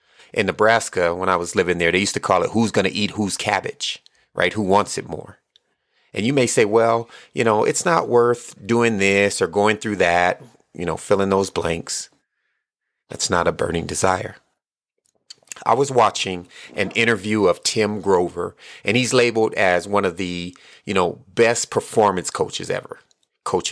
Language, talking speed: English, 180 wpm